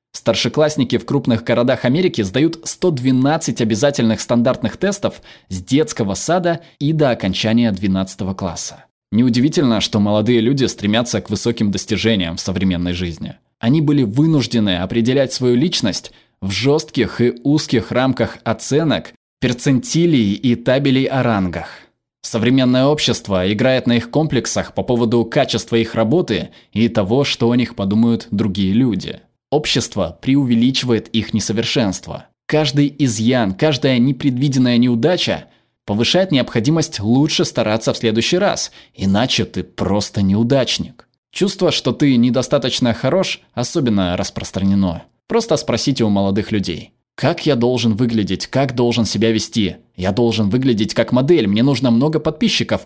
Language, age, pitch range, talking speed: Russian, 20-39, 110-135 Hz, 130 wpm